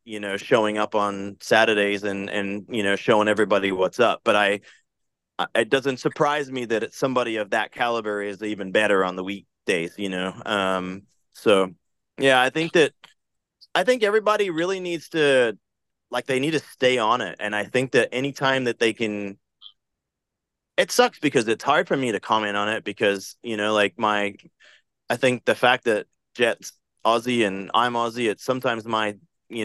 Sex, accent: male, American